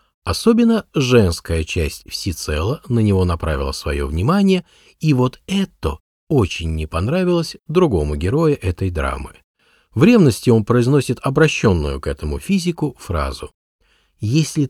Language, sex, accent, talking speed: Russian, male, native, 120 wpm